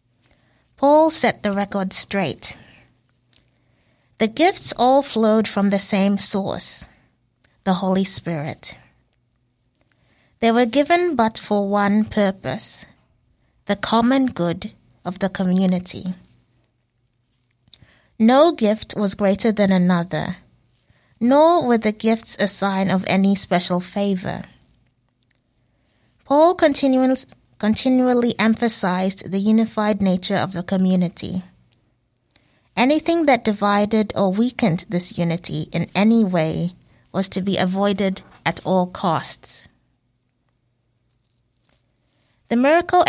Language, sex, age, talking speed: English, female, 20-39, 105 wpm